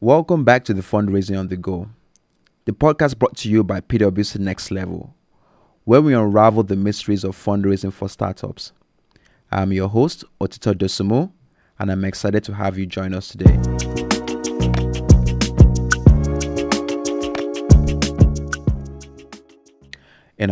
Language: English